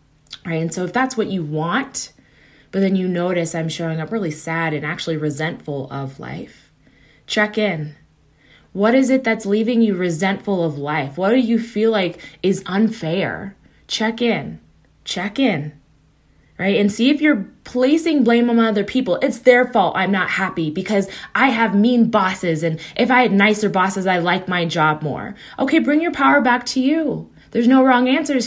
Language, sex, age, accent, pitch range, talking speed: English, female, 20-39, American, 165-230 Hz, 185 wpm